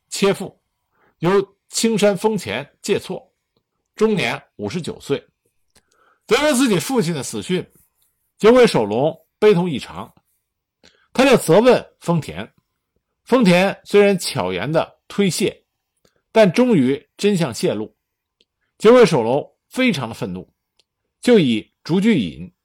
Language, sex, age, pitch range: Chinese, male, 50-69, 160-220 Hz